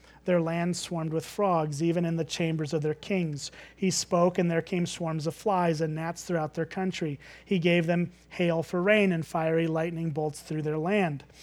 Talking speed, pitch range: 200 wpm, 155-185 Hz